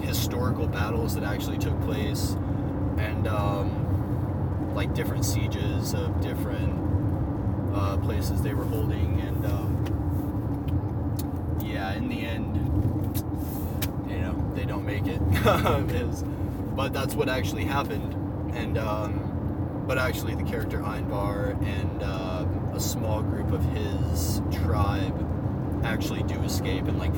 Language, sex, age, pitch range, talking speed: English, male, 20-39, 95-105 Hz, 120 wpm